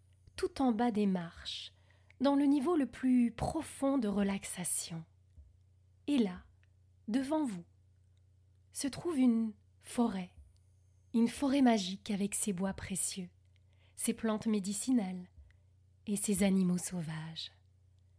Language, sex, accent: French, female, French